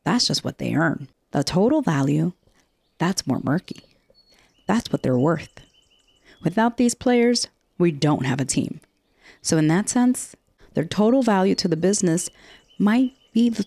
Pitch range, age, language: 145-195 Hz, 30-49, English